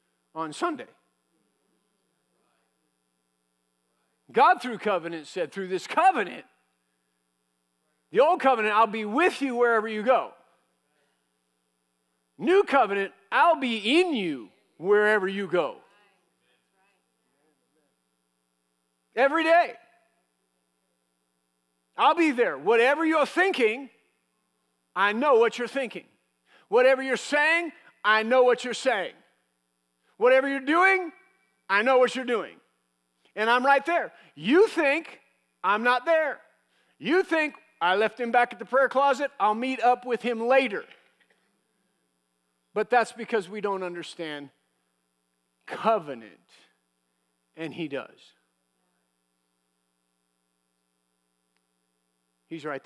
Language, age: English, 50-69